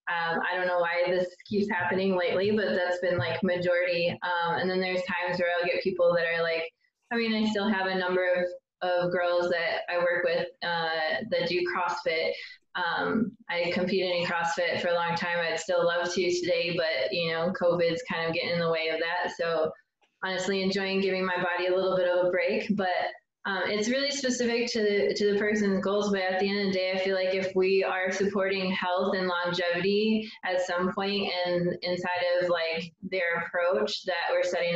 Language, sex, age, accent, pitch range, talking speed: English, female, 20-39, American, 175-195 Hz, 210 wpm